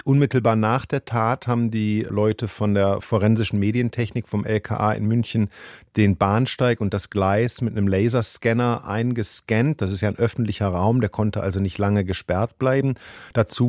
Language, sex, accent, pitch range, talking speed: German, male, German, 105-125 Hz, 165 wpm